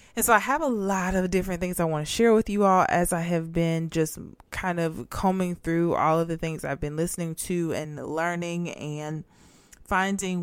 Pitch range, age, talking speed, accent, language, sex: 160-190 Hz, 20-39, 215 wpm, American, English, female